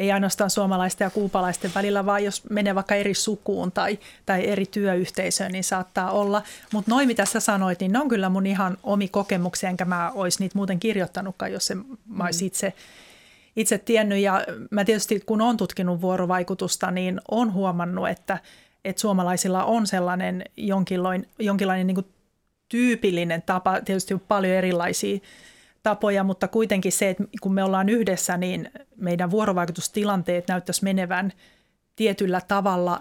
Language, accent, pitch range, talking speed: Finnish, native, 185-215 Hz, 155 wpm